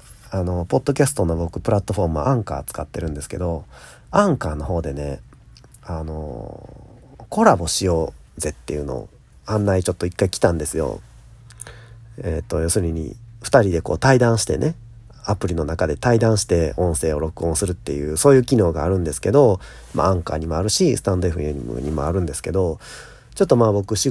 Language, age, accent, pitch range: Japanese, 40-59, native, 80-115 Hz